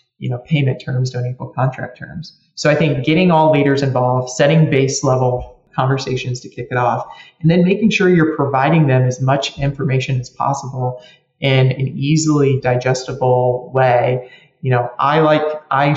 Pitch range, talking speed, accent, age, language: 125-145 Hz, 170 wpm, American, 30-49, English